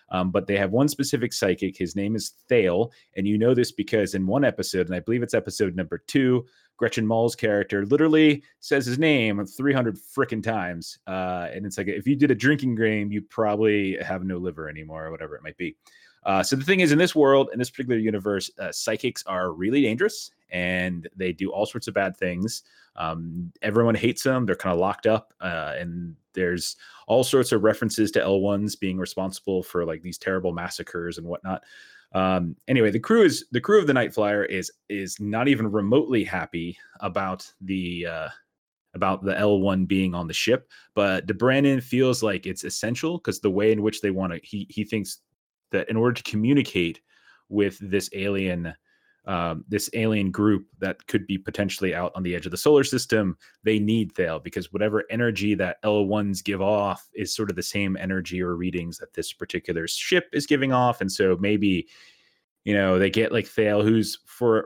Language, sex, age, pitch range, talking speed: English, male, 30-49, 95-115 Hz, 200 wpm